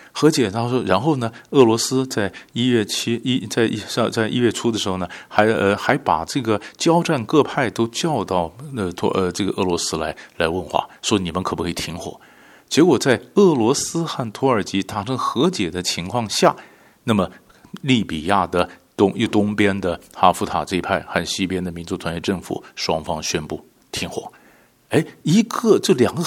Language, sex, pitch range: Chinese, male, 95-135 Hz